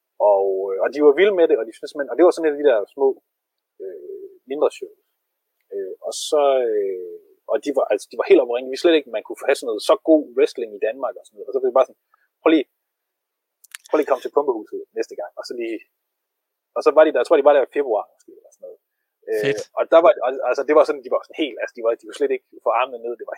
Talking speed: 275 wpm